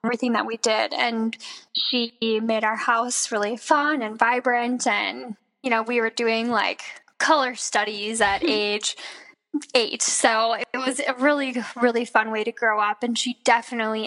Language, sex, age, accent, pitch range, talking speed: English, female, 10-29, American, 220-270 Hz, 165 wpm